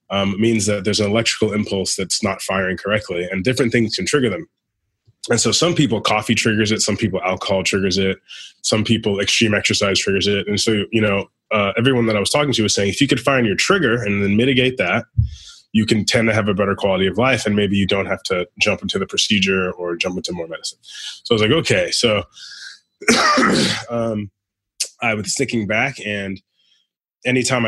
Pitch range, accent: 100-115 Hz, American